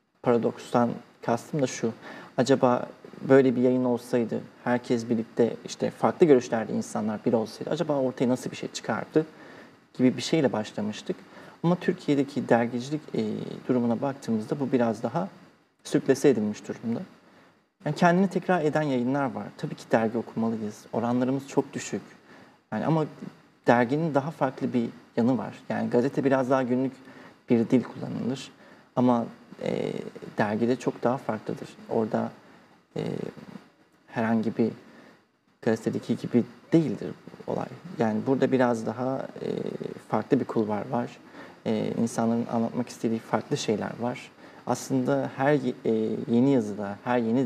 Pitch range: 120-155 Hz